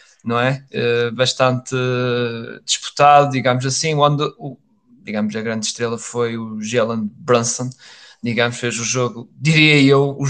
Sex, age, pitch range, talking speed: male, 20-39, 125-150 Hz, 130 wpm